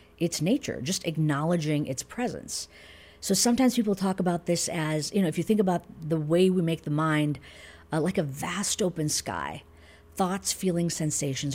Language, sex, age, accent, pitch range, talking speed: English, female, 50-69, American, 145-190 Hz, 175 wpm